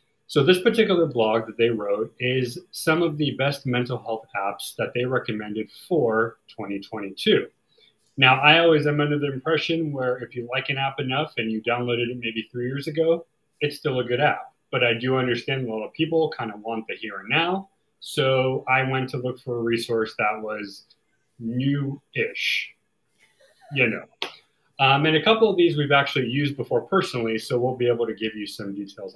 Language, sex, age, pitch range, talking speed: English, male, 30-49, 115-155 Hz, 195 wpm